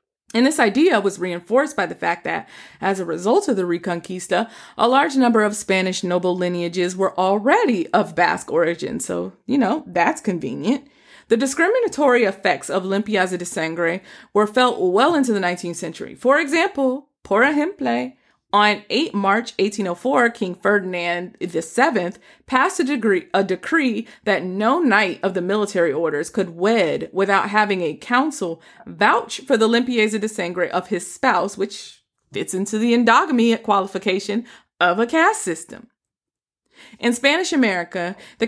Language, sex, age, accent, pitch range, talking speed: English, female, 30-49, American, 180-245 Hz, 160 wpm